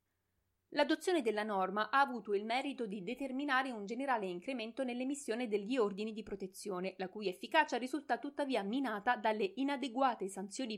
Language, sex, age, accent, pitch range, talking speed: Italian, female, 30-49, native, 195-255 Hz, 145 wpm